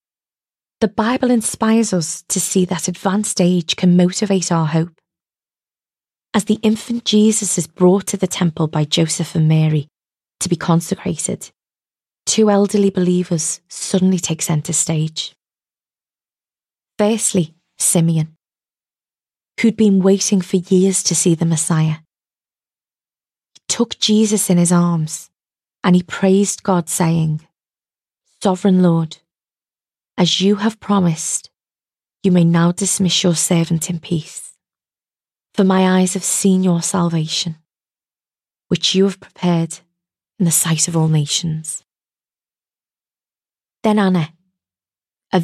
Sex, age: female, 20-39